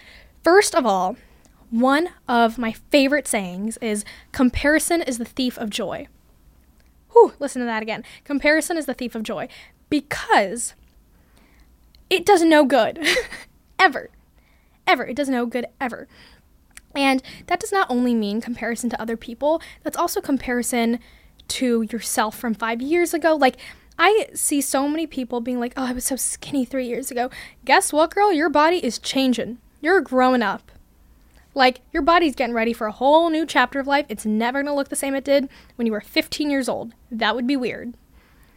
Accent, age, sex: American, 10-29, female